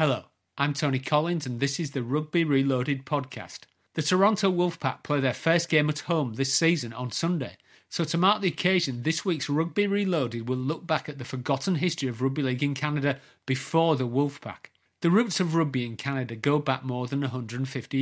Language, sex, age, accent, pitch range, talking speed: English, male, 40-59, British, 130-170 Hz, 195 wpm